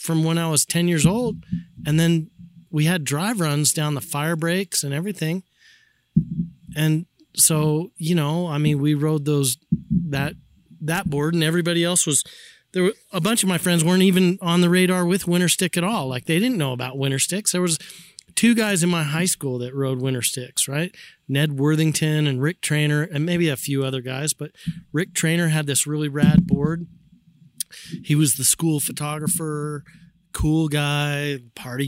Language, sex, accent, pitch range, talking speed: English, male, American, 130-175 Hz, 185 wpm